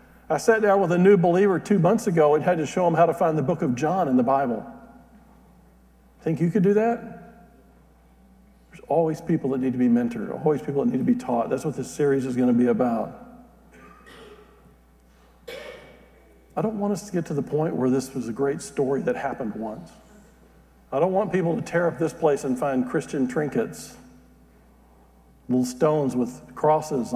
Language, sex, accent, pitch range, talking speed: English, male, American, 120-200 Hz, 195 wpm